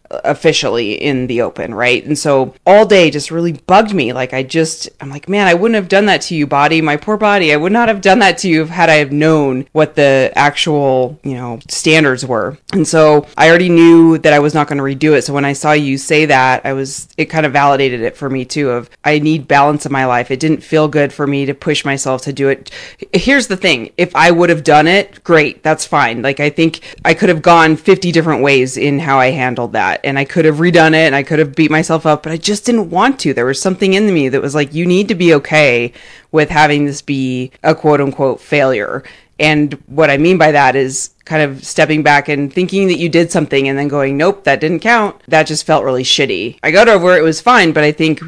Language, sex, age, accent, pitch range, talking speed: English, female, 30-49, American, 140-165 Hz, 255 wpm